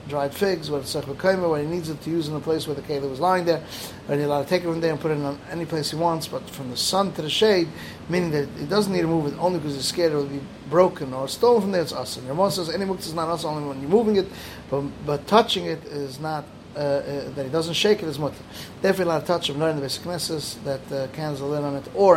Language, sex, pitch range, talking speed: English, male, 145-175 Hz, 300 wpm